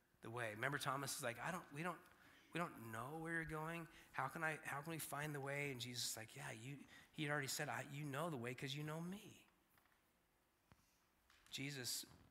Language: English